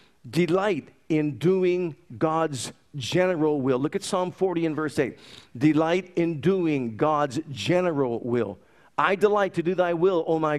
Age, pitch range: 50-69, 150-185 Hz